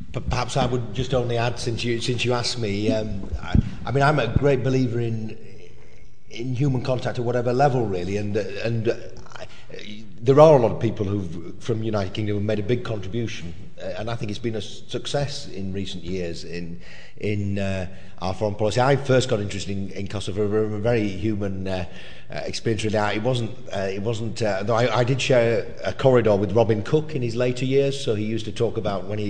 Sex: male